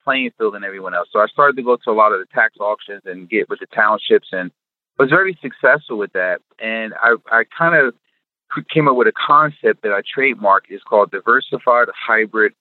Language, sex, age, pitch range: English, male, 30-49, 110-180 Hz